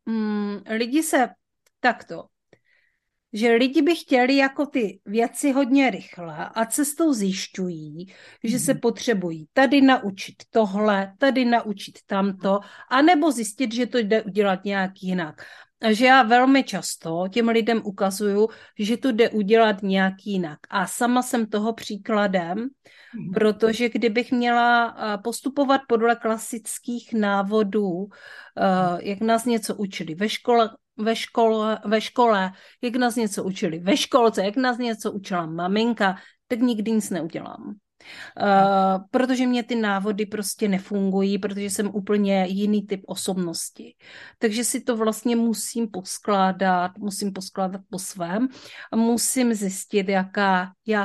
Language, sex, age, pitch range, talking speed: Czech, female, 40-59, 195-240 Hz, 125 wpm